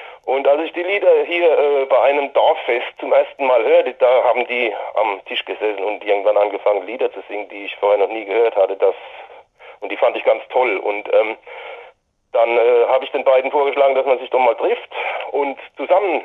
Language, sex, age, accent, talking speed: German, male, 40-59, German, 205 wpm